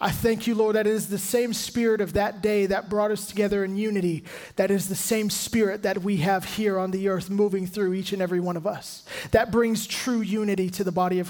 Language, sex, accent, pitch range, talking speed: English, male, American, 200-240 Hz, 250 wpm